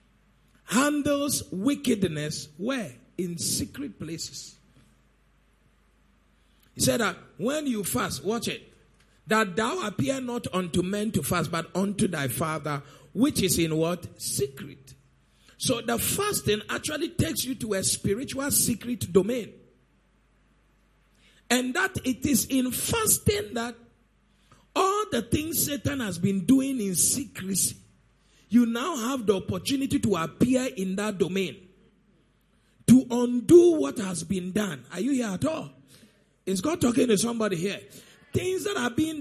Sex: male